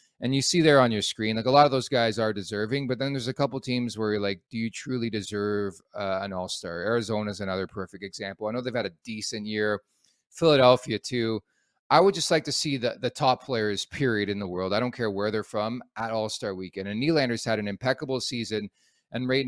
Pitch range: 100-125 Hz